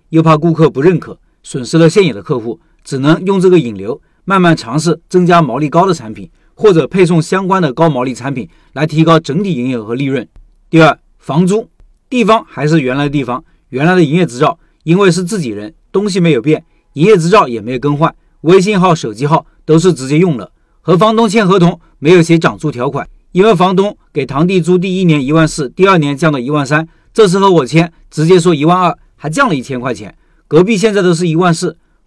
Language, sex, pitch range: Chinese, male, 150-185 Hz